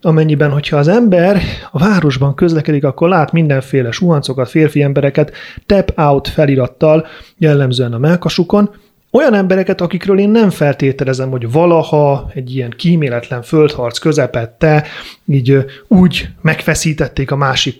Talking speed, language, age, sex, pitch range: 120 wpm, Hungarian, 30-49, male, 130-165 Hz